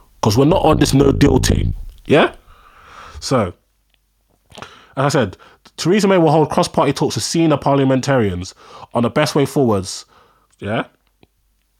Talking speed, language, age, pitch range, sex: 135 wpm, English, 20-39, 120-155 Hz, male